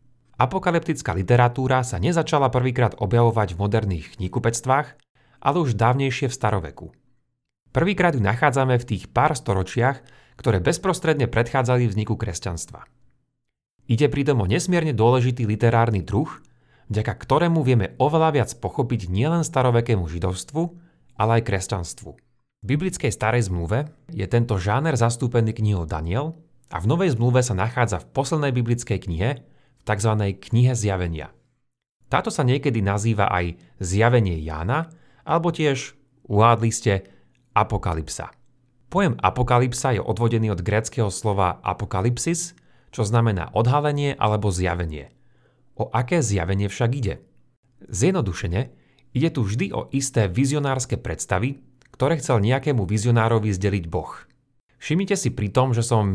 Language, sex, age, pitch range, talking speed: Slovak, male, 30-49, 105-135 Hz, 125 wpm